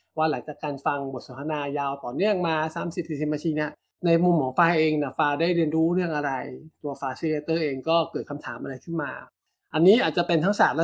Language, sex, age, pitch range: Thai, male, 20-39, 145-175 Hz